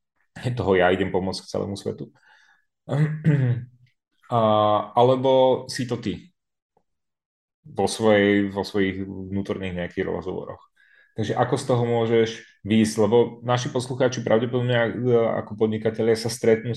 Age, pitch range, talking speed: 30-49, 95-120 Hz, 115 wpm